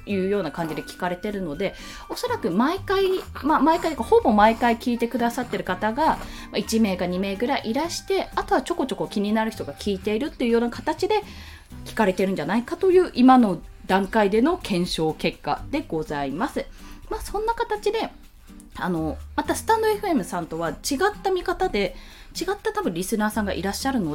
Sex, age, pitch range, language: female, 20-39, 185-300 Hz, Japanese